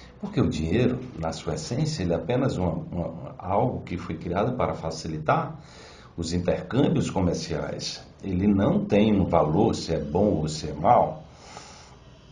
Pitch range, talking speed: 80-130 Hz, 145 wpm